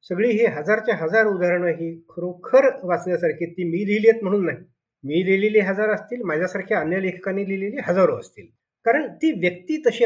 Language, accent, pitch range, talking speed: Marathi, native, 160-230 Hz, 180 wpm